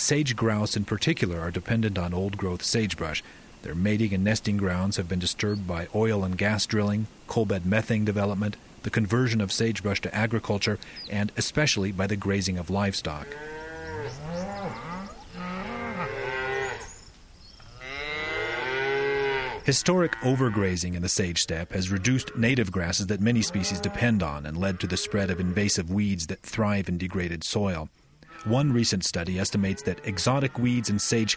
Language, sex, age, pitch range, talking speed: English, male, 40-59, 95-120 Hz, 145 wpm